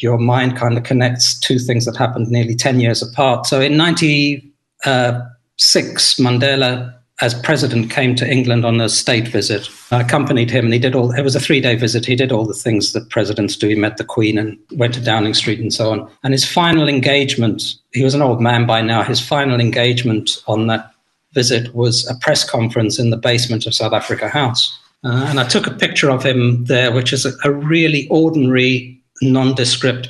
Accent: British